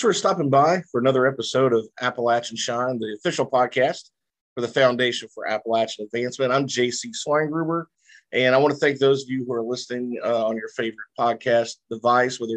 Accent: American